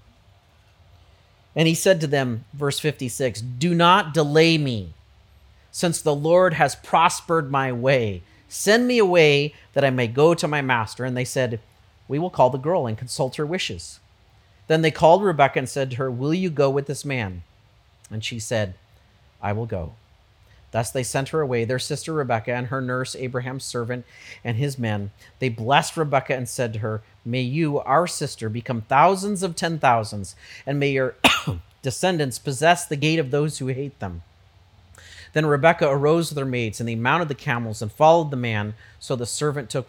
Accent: American